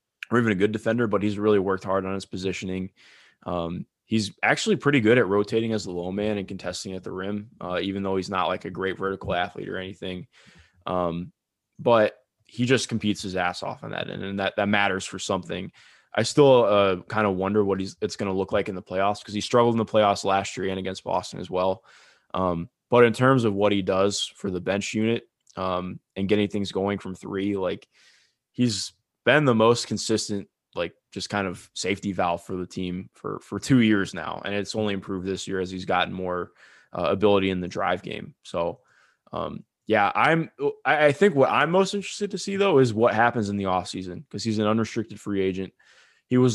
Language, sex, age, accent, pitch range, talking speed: English, male, 20-39, American, 95-110 Hz, 215 wpm